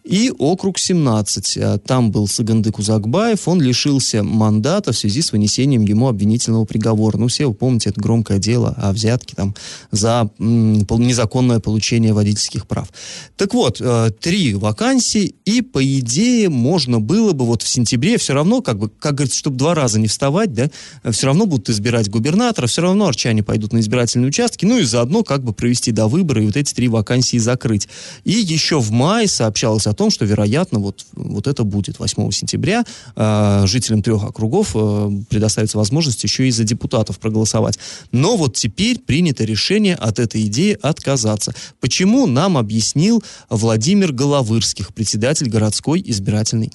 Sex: male